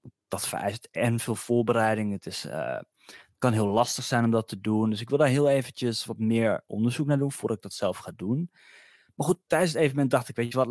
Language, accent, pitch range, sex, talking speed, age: Dutch, Dutch, 105-130 Hz, male, 240 wpm, 20-39